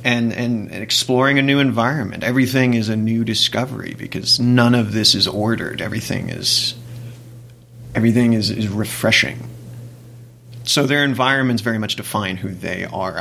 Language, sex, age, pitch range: English, male, 30-49, 110-120 Hz